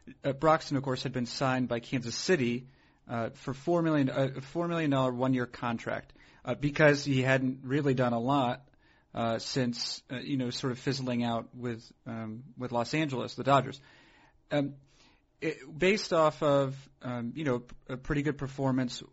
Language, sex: English, male